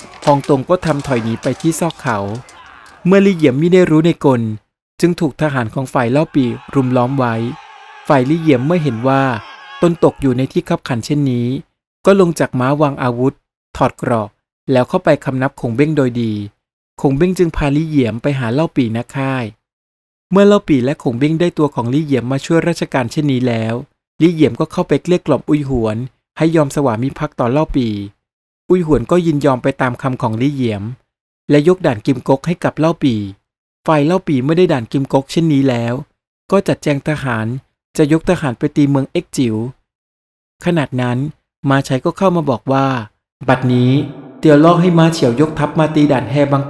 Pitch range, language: 125-160 Hz, Thai